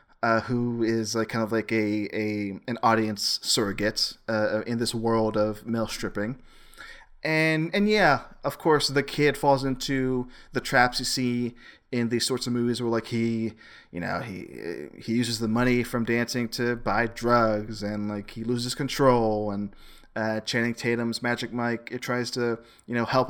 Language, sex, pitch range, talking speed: English, male, 110-130 Hz, 180 wpm